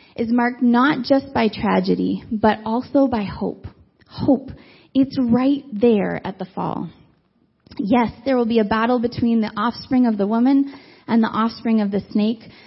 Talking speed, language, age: 165 wpm, English, 20-39